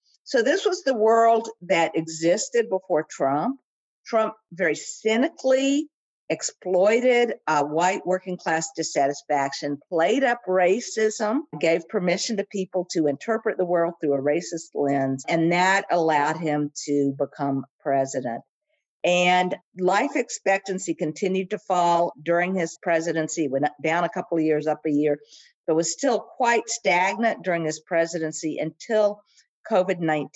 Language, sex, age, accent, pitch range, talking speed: English, female, 50-69, American, 160-225 Hz, 135 wpm